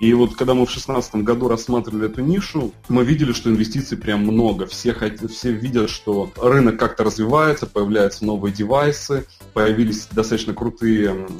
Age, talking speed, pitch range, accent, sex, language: 30-49, 155 wpm, 110-130 Hz, native, male, Russian